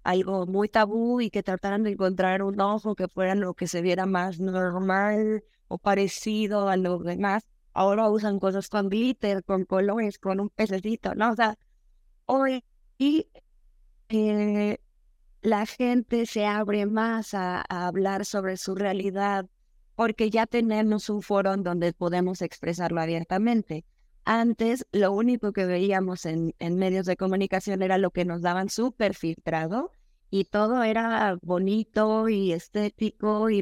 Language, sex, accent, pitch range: Spanish, female, Mexican, 185-215 Hz